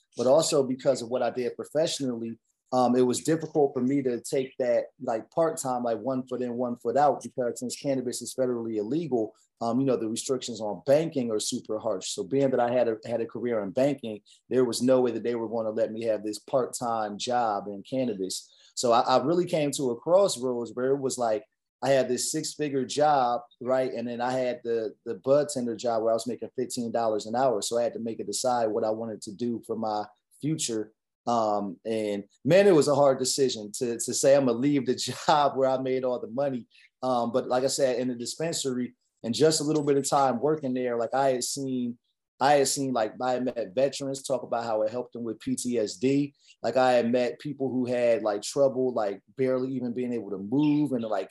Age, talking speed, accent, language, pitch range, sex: 30-49, 225 wpm, American, English, 120-140 Hz, male